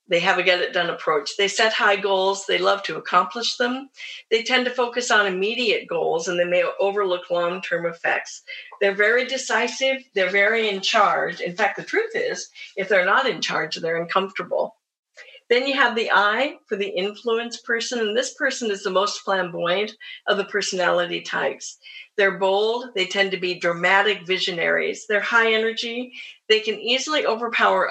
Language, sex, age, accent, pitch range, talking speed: English, female, 50-69, American, 185-255 Hz, 175 wpm